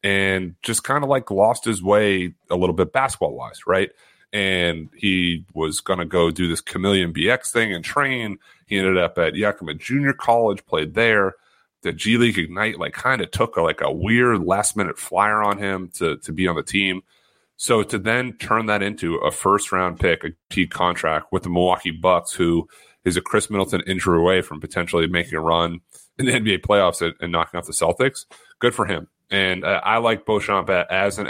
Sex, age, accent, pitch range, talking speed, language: male, 30-49, American, 85-105 Hz, 200 wpm, English